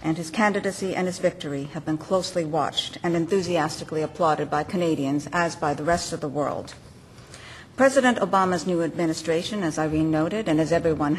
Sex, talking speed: female, 170 wpm